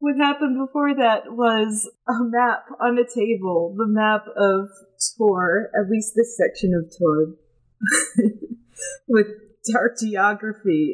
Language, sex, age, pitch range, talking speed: English, female, 30-49, 170-225 Hz, 125 wpm